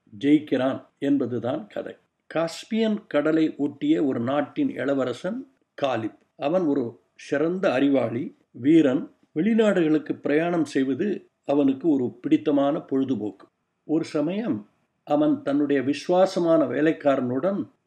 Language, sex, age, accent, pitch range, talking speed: Tamil, male, 60-79, native, 145-210 Hz, 95 wpm